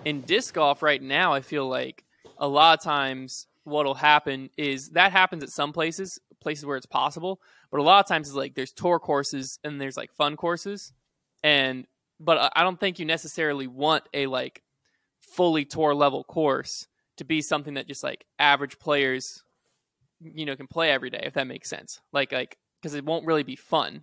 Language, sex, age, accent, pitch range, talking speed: English, male, 20-39, American, 135-160 Hz, 200 wpm